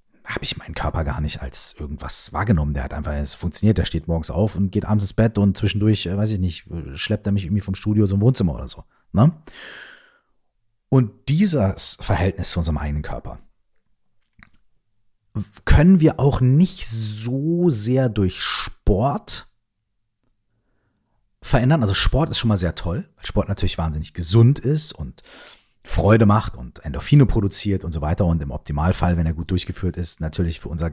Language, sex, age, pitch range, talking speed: German, male, 40-59, 85-115 Hz, 170 wpm